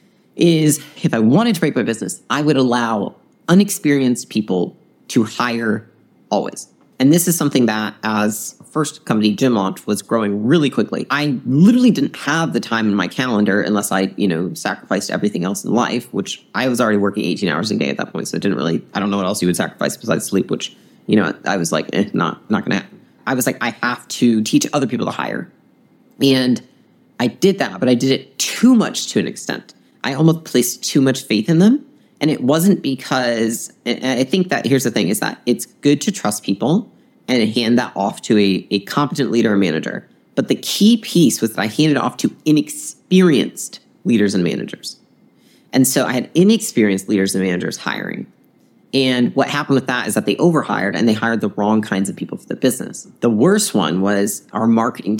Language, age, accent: English, 30-49, American